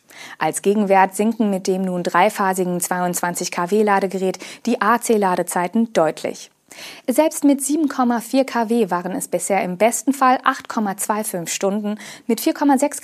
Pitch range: 180-250 Hz